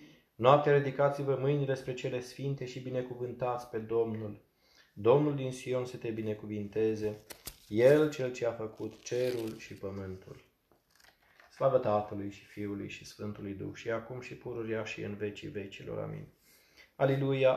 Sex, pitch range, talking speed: male, 100-120 Hz, 140 wpm